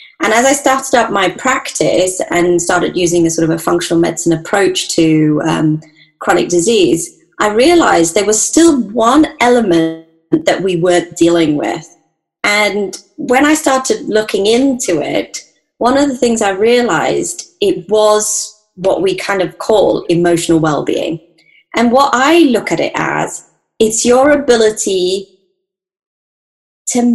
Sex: female